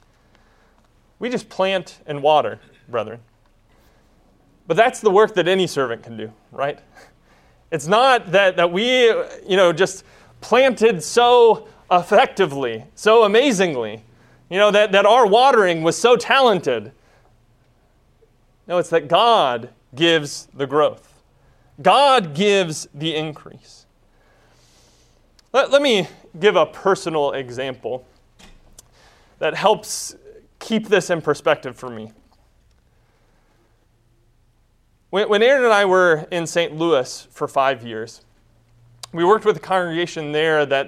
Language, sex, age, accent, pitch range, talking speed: English, male, 30-49, American, 130-195 Hz, 120 wpm